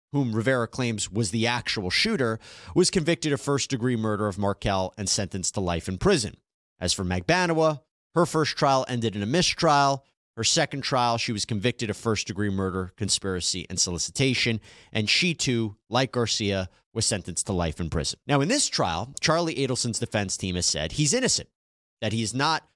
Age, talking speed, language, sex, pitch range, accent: 30-49, 185 wpm, English, male, 110-155 Hz, American